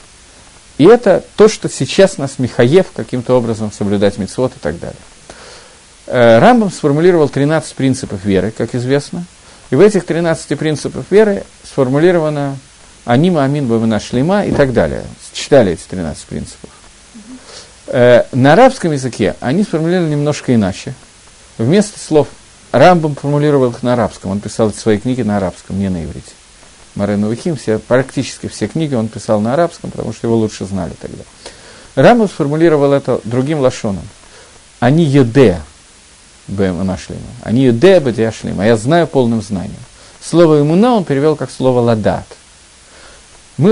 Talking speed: 140 wpm